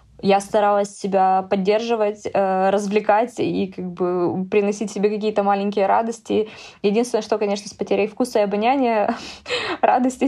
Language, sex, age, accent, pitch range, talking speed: Ukrainian, female, 20-39, native, 200-235 Hz, 130 wpm